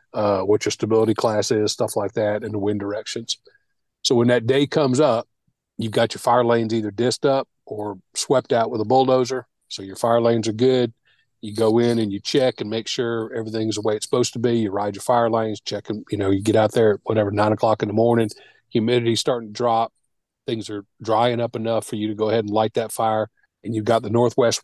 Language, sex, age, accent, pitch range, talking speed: English, male, 40-59, American, 110-120 Hz, 240 wpm